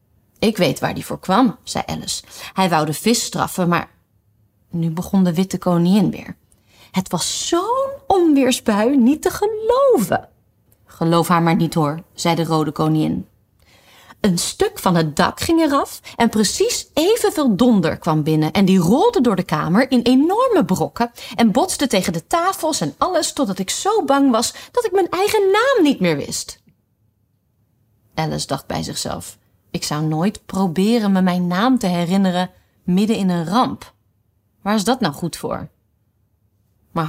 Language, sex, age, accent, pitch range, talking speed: Dutch, female, 30-49, Dutch, 150-215 Hz, 165 wpm